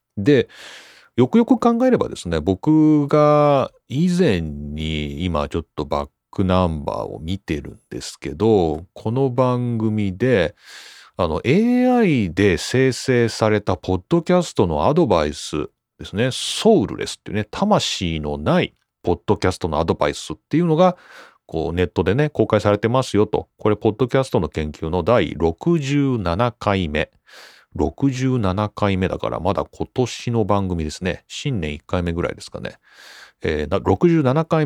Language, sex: Japanese, male